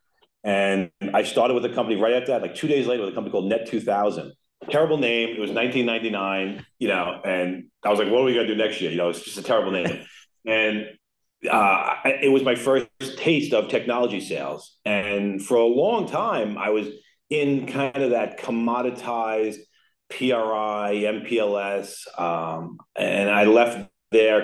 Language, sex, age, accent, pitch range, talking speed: English, male, 40-59, American, 95-125 Hz, 180 wpm